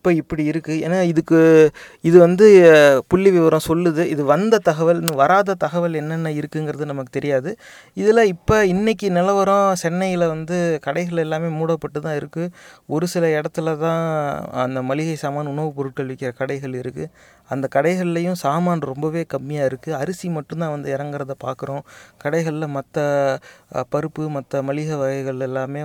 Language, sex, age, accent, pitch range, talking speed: Tamil, male, 30-49, native, 140-170 Hz, 140 wpm